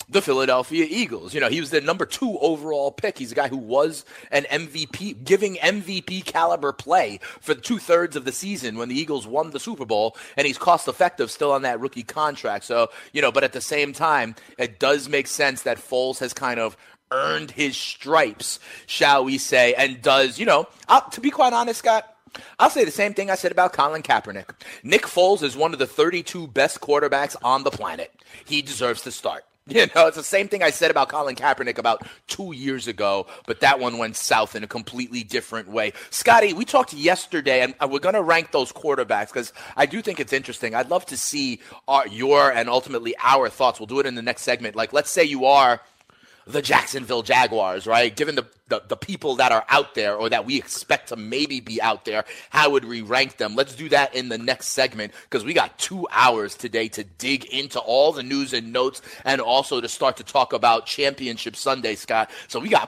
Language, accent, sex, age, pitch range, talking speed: English, American, male, 30-49, 125-165 Hz, 220 wpm